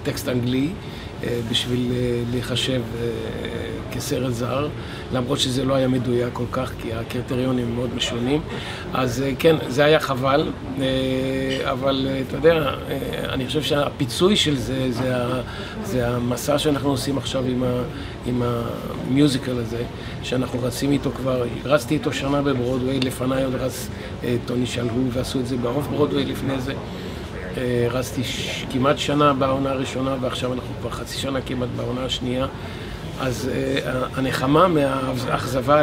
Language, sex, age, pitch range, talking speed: Hebrew, male, 50-69, 120-135 Hz, 130 wpm